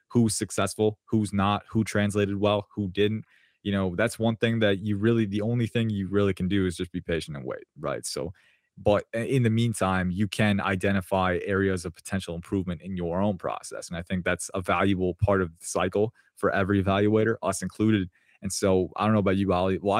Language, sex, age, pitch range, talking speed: English, male, 20-39, 95-105 Hz, 215 wpm